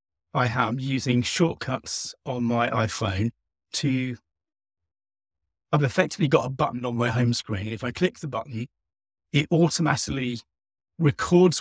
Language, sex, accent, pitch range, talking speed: English, male, British, 105-145 Hz, 130 wpm